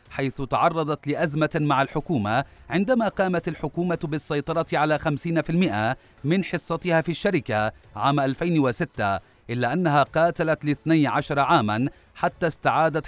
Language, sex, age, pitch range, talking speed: Arabic, male, 30-49, 135-170 Hz, 115 wpm